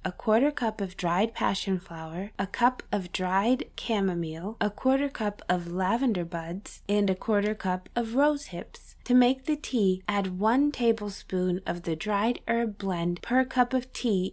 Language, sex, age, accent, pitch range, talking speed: English, female, 20-39, American, 185-245 Hz, 170 wpm